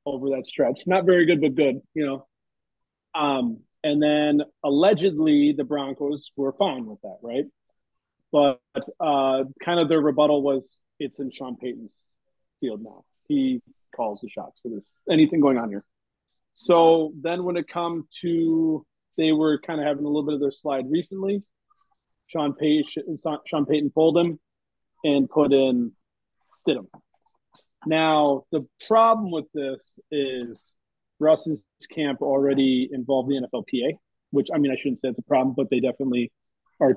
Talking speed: 155 wpm